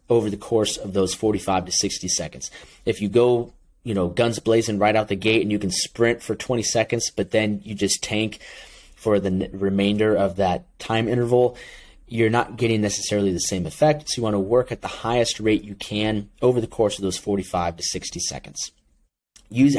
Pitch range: 100-120 Hz